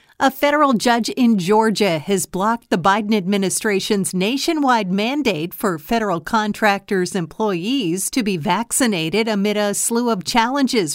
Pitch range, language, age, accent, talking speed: 185-230 Hz, English, 50-69, American, 130 wpm